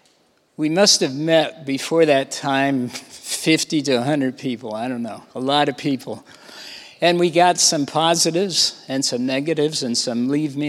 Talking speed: 170 wpm